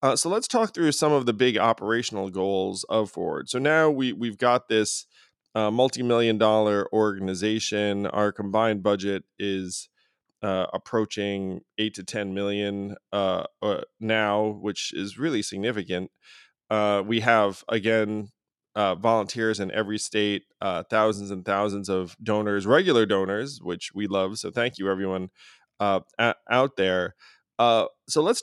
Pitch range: 100-125 Hz